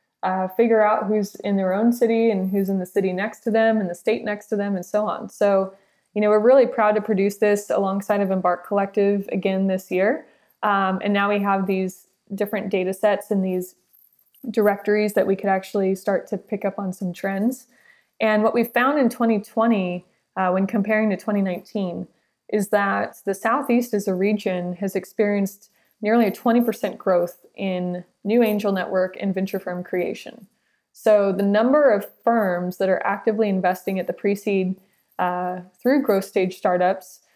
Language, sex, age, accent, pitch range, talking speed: English, female, 20-39, American, 190-215 Hz, 180 wpm